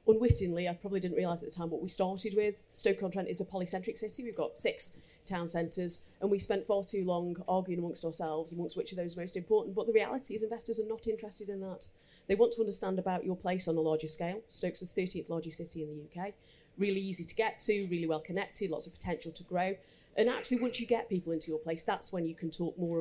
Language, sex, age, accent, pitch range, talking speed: English, female, 30-49, British, 170-215 Hz, 245 wpm